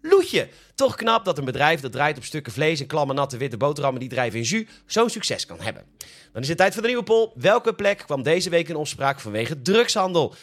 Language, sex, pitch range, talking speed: Dutch, male, 130-180 Hz, 235 wpm